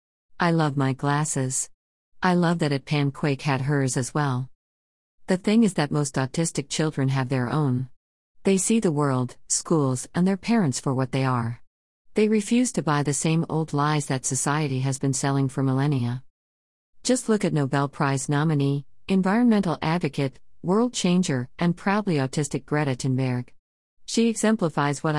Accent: American